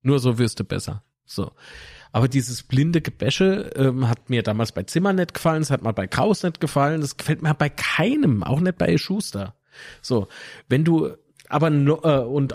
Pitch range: 120-150 Hz